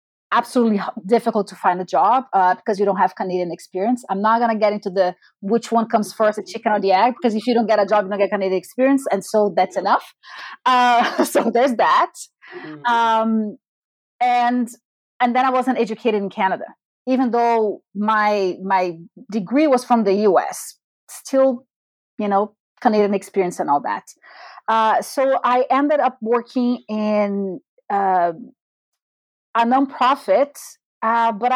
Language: English